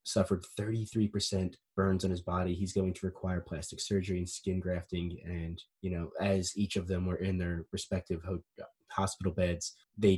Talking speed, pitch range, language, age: 175 wpm, 95-125 Hz, English, 20-39